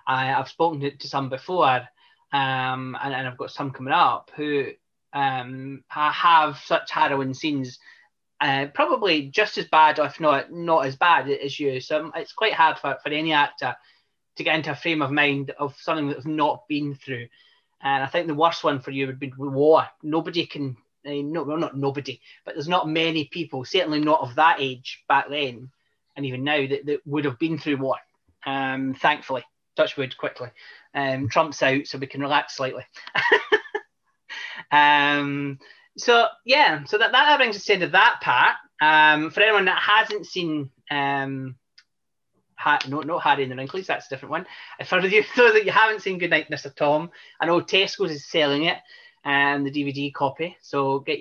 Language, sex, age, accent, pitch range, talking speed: English, male, 20-39, British, 140-165 Hz, 185 wpm